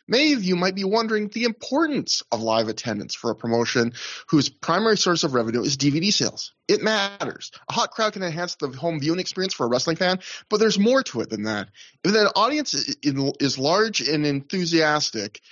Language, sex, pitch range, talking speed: English, male, 140-205 Hz, 195 wpm